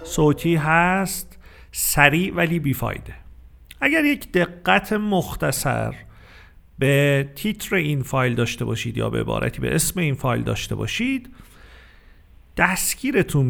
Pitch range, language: 125-185 Hz, Persian